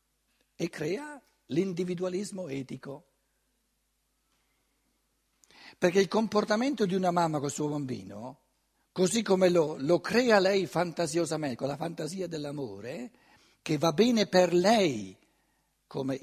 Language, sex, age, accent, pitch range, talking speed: Italian, male, 60-79, native, 140-195 Hz, 110 wpm